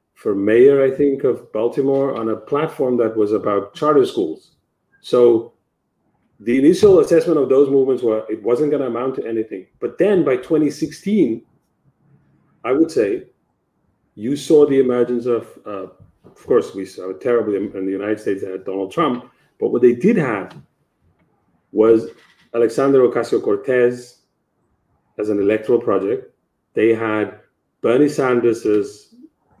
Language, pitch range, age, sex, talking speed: English, 105-140 Hz, 40-59, male, 140 wpm